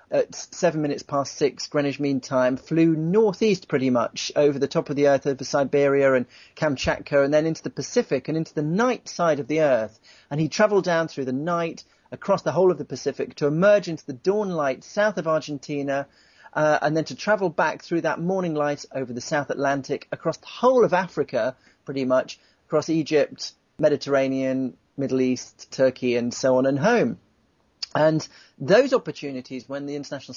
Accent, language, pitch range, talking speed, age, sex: British, English, 140-170 Hz, 190 wpm, 40-59, male